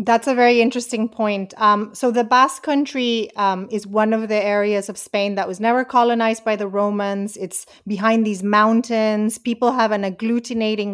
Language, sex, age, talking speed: English, female, 30-49, 180 wpm